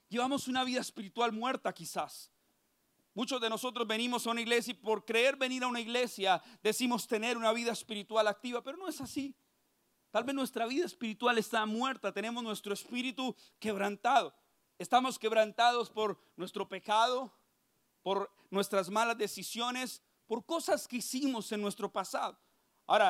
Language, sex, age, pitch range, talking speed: Spanish, male, 40-59, 205-245 Hz, 150 wpm